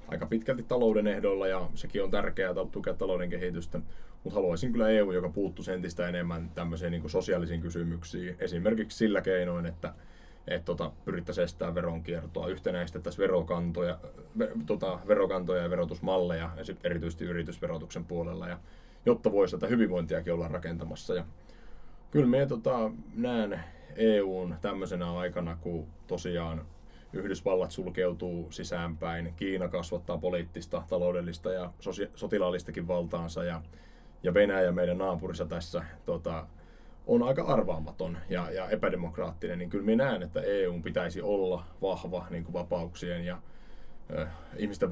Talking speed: 130 wpm